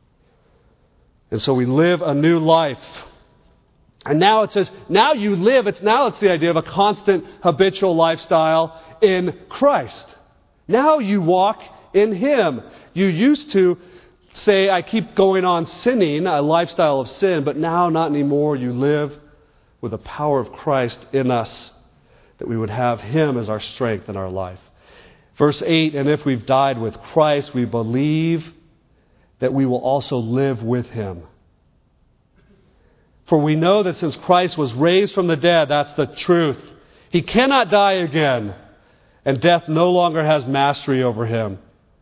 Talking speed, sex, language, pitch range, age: 160 wpm, male, English, 130-180 Hz, 40-59